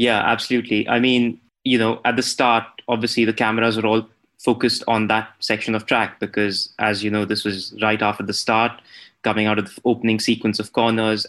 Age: 20-39